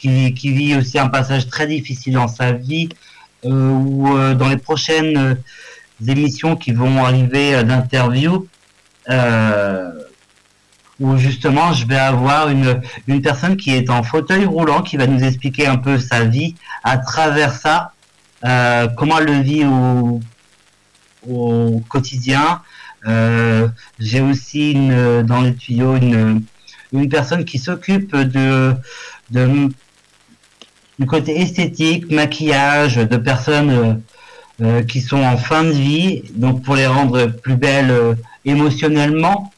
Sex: male